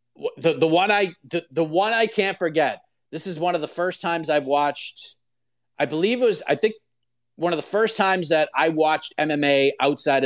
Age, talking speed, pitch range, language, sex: 30-49, 205 wpm, 125-165 Hz, English, male